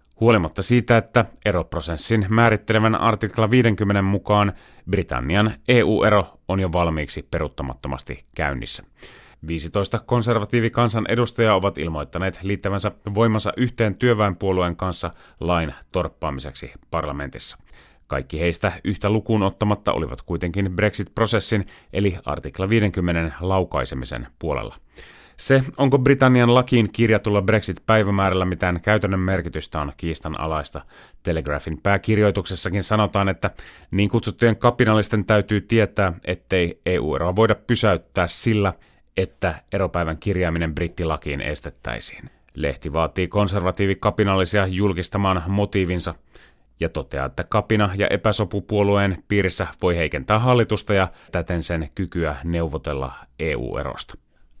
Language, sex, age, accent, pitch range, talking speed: Finnish, male, 30-49, native, 85-105 Hz, 100 wpm